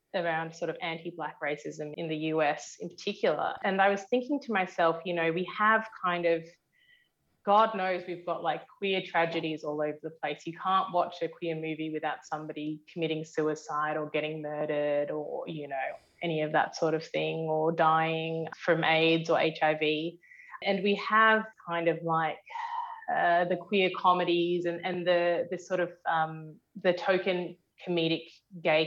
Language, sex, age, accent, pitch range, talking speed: English, female, 20-39, Australian, 160-190 Hz, 170 wpm